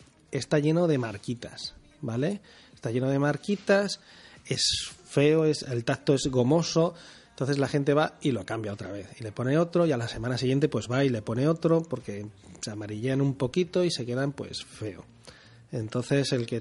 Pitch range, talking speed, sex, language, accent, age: 115-140 Hz, 190 wpm, male, Spanish, Spanish, 30-49